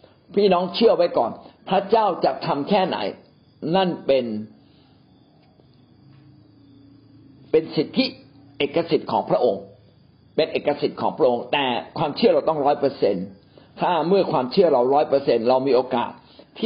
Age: 60-79